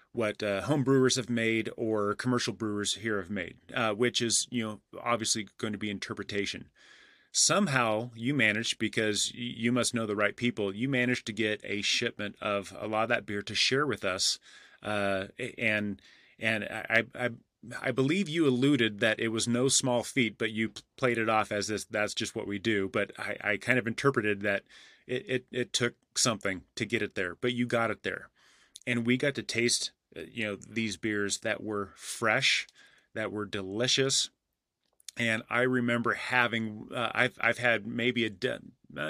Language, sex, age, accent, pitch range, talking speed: English, male, 30-49, American, 105-120 Hz, 185 wpm